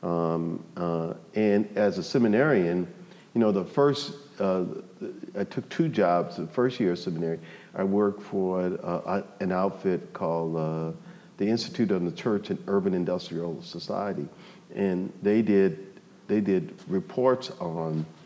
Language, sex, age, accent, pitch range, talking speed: English, male, 50-69, American, 85-105 Hz, 145 wpm